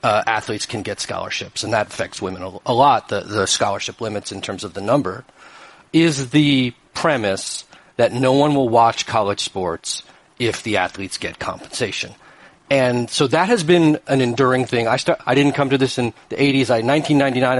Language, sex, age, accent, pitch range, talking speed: English, male, 40-59, American, 125-155 Hz, 190 wpm